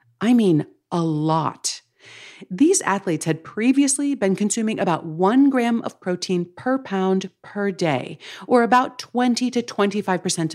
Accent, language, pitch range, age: American, English, 155-225 Hz, 40-59